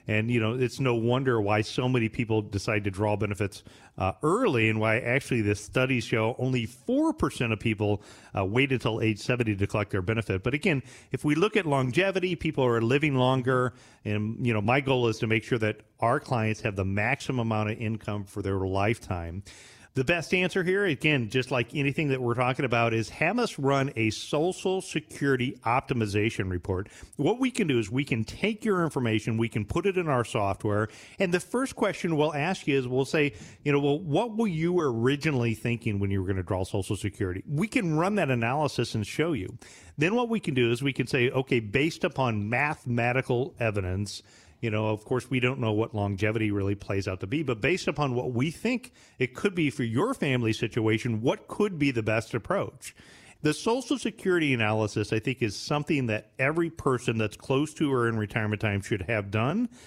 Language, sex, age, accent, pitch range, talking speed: English, male, 40-59, American, 110-145 Hz, 205 wpm